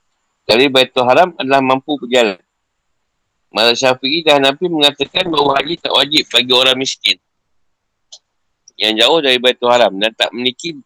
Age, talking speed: 50-69, 145 wpm